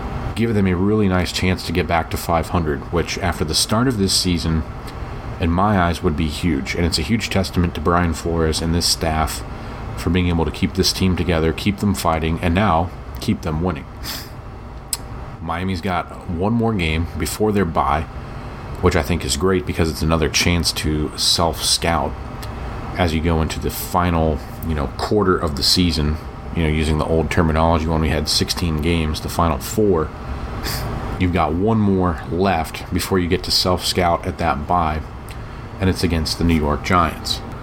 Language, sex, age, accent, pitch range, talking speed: English, male, 30-49, American, 80-105 Hz, 185 wpm